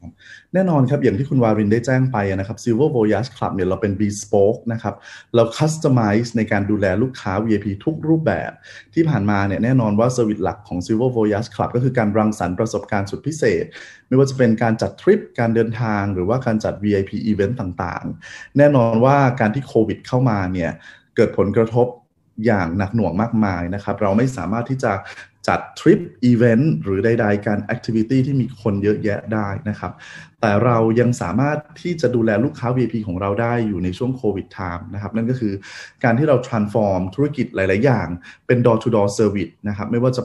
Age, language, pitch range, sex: 20-39, Thai, 105-125 Hz, male